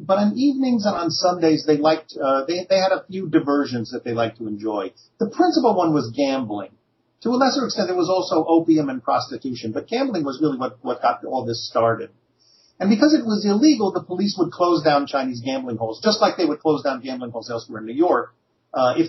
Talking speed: 225 wpm